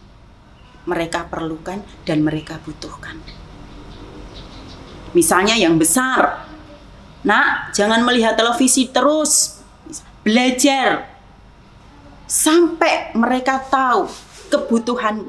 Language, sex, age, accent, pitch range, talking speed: Indonesian, female, 30-49, native, 185-265 Hz, 70 wpm